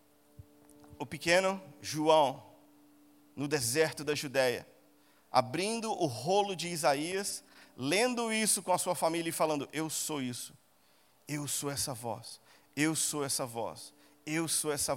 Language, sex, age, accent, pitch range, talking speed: Portuguese, male, 40-59, Brazilian, 155-255 Hz, 135 wpm